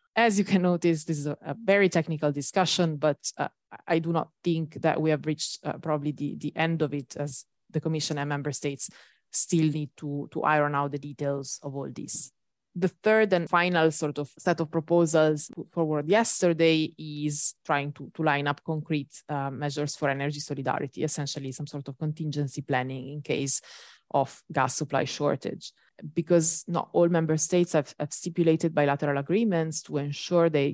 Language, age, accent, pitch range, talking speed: English, 20-39, Italian, 145-165 Hz, 180 wpm